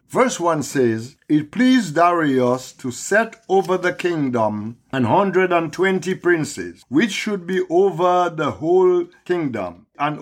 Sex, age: male, 50-69